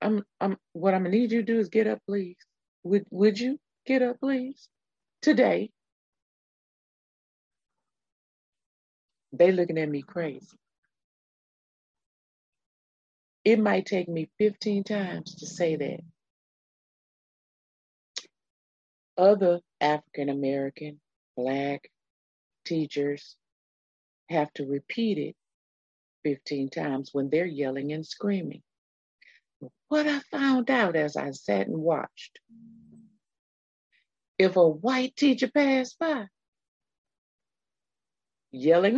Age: 40-59